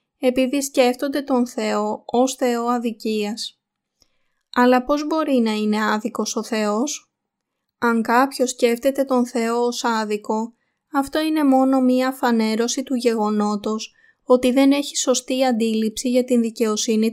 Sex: female